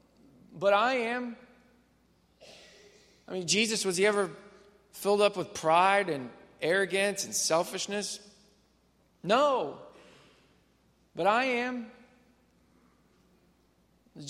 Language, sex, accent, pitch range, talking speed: English, male, American, 135-205 Hz, 90 wpm